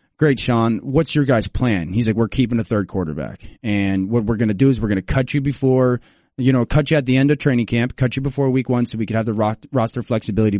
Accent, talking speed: American, 270 wpm